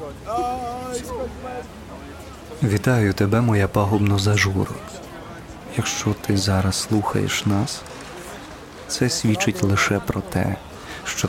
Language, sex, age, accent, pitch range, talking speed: Ukrainian, male, 20-39, native, 100-110 Hz, 85 wpm